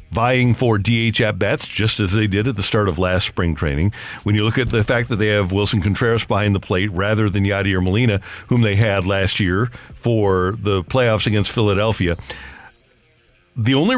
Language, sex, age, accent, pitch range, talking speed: English, male, 50-69, American, 100-125 Hz, 195 wpm